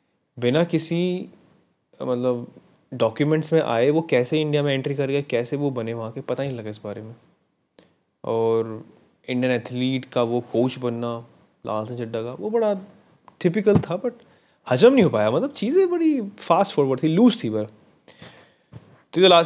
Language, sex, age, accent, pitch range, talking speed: Hindi, male, 20-39, native, 120-155 Hz, 175 wpm